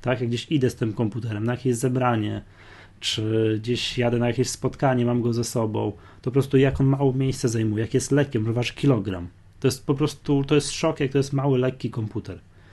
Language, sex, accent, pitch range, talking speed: Polish, male, native, 105-135 Hz, 215 wpm